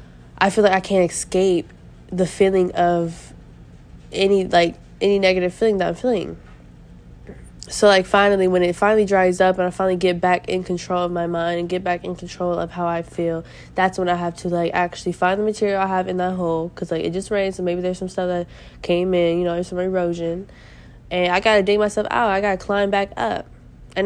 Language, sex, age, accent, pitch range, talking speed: English, female, 20-39, American, 170-195 Hz, 230 wpm